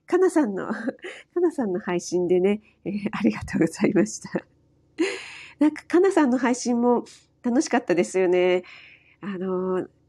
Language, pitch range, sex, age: Japanese, 185-270 Hz, female, 40-59